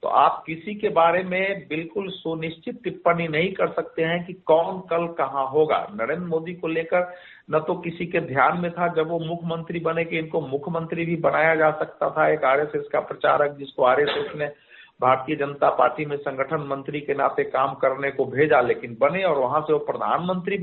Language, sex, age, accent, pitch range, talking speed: Hindi, male, 50-69, native, 155-195 Hz, 195 wpm